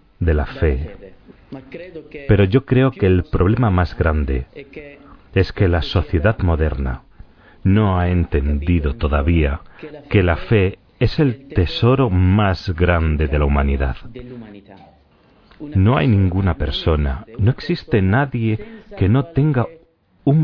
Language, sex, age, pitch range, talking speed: Spanish, male, 40-59, 85-125 Hz, 125 wpm